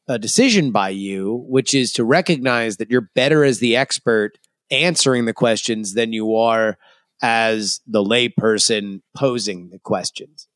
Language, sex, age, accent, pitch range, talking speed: English, male, 30-49, American, 125-175 Hz, 150 wpm